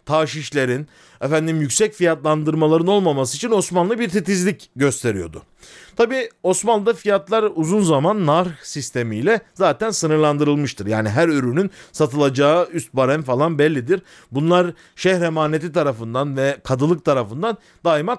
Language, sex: Turkish, male